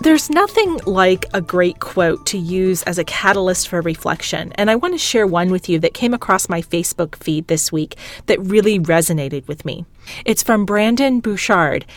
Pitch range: 170-225 Hz